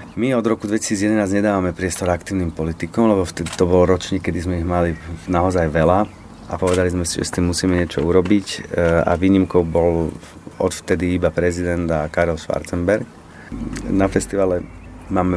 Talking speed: 165 wpm